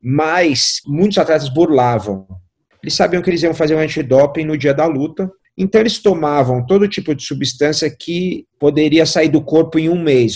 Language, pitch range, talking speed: Portuguese, 120-155 Hz, 180 wpm